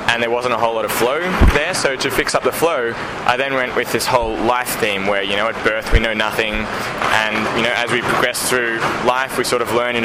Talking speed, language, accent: 265 wpm, English, Australian